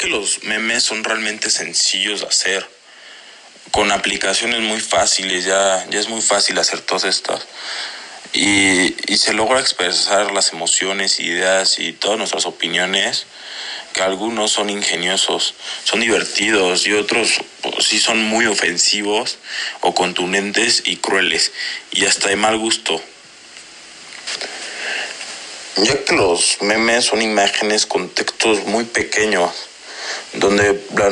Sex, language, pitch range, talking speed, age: male, Spanish, 100-110 Hz, 130 wpm, 20-39